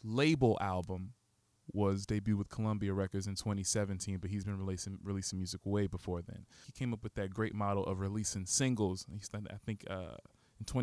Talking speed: 195 wpm